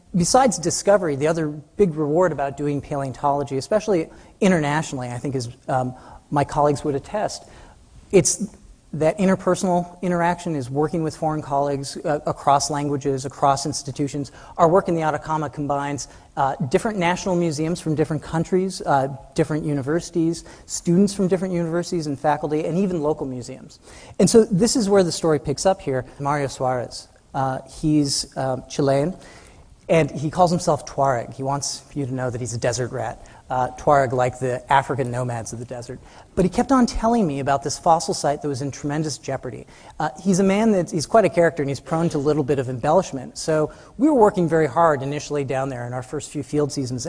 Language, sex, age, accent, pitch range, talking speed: English, male, 40-59, American, 140-175 Hz, 185 wpm